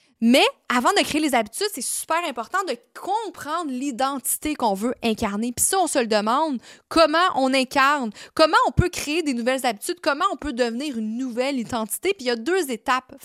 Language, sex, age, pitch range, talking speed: French, female, 20-39, 230-305 Hz, 200 wpm